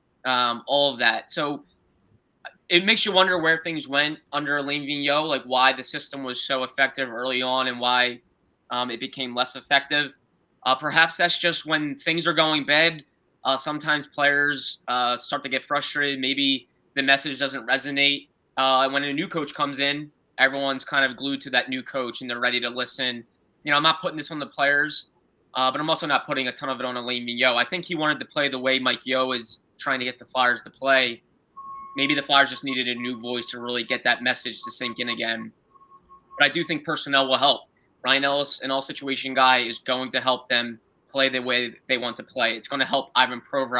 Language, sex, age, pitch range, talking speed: English, male, 10-29, 125-145 Hz, 220 wpm